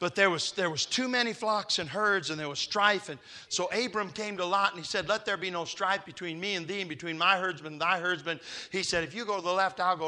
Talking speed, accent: 290 wpm, American